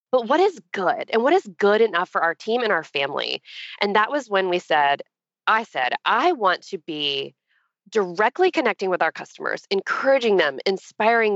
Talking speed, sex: 185 wpm, female